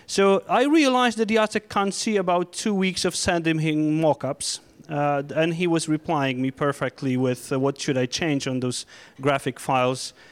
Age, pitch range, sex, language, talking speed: 30-49, 140-170 Hz, male, Polish, 185 wpm